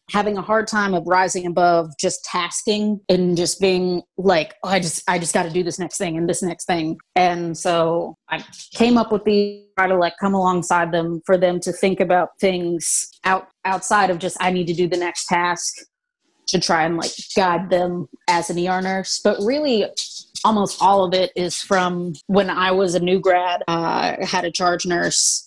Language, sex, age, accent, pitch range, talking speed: English, female, 30-49, American, 175-195 Hz, 205 wpm